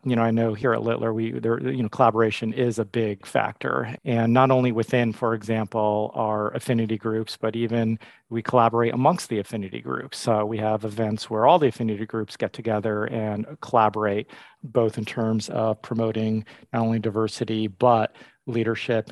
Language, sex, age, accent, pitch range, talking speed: English, male, 40-59, American, 105-115 Hz, 175 wpm